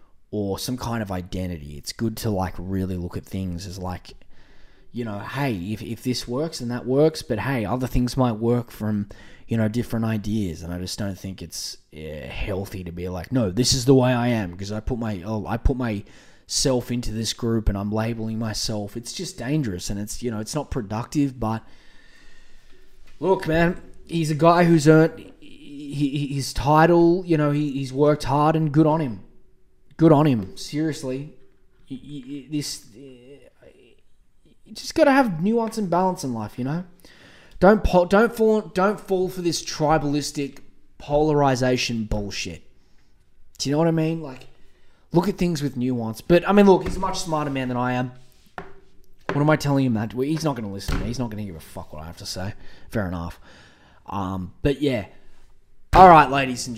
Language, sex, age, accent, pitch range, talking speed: English, male, 20-39, Australian, 105-155 Hz, 195 wpm